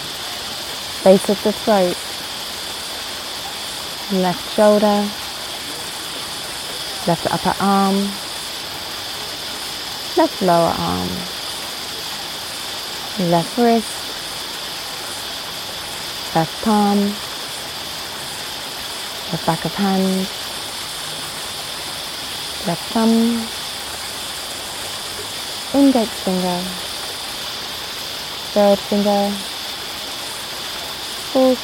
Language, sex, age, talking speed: English, female, 30-49, 50 wpm